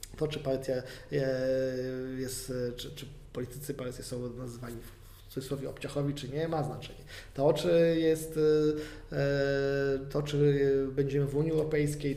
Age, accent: 20-39, native